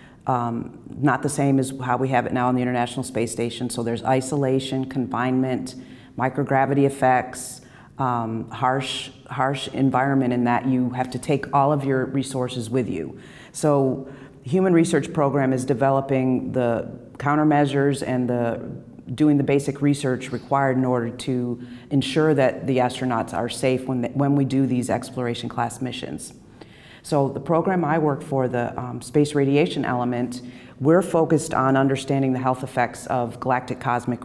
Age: 40-59